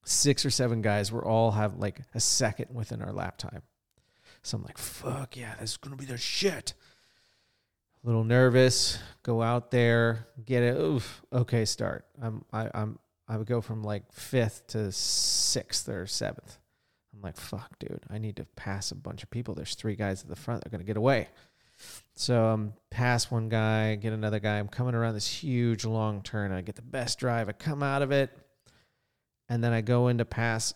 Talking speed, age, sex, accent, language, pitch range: 200 wpm, 30-49, male, American, English, 110-125 Hz